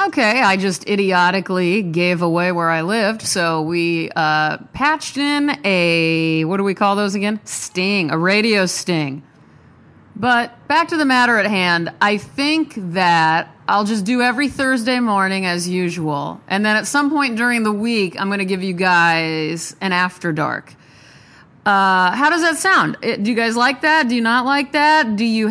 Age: 30-49